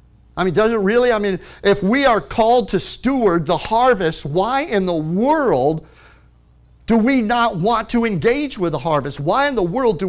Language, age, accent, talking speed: English, 50-69, American, 195 wpm